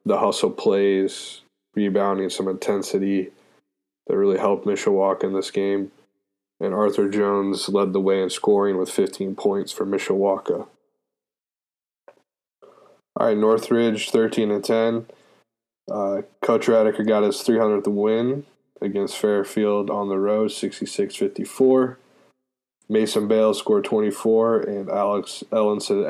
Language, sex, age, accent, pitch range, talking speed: English, male, 20-39, American, 100-110 Hz, 115 wpm